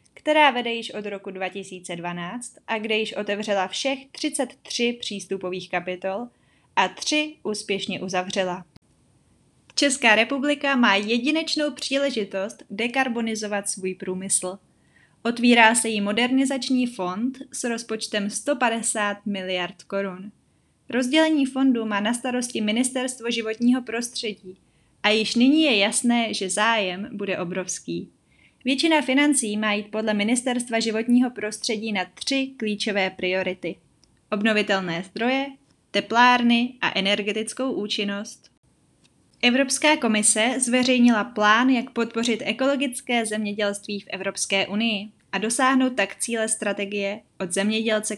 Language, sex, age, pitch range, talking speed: Czech, female, 20-39, 200-250 Hz, 110 wpm